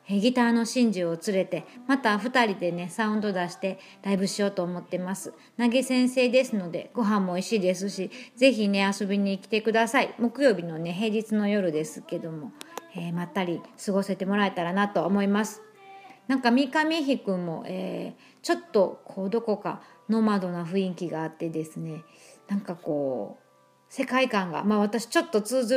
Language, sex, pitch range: Japanese, female, 185-240 Hz